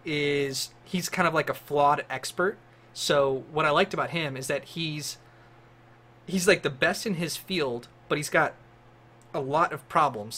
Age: 30-49